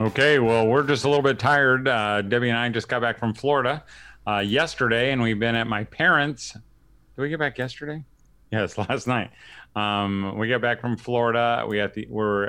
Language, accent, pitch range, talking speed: English, American, 105-125 Hz, 205 wpm